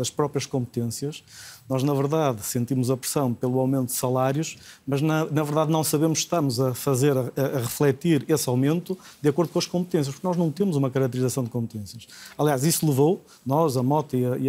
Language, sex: Portuguese, male